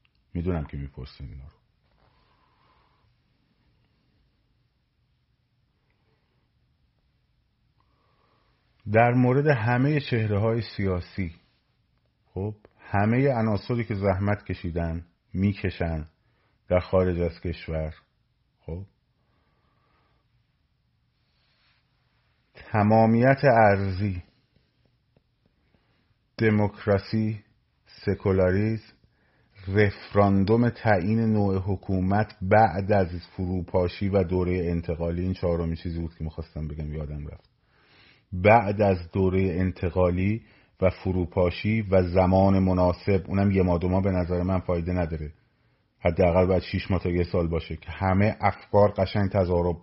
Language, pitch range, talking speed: Persian, 90-115 Hz, 90 wpm